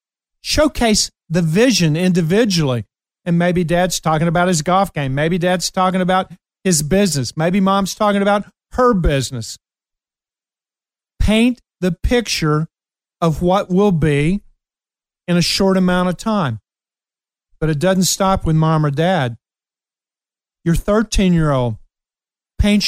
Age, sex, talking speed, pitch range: 40-59, male, 125 wpm, 155-195 Hz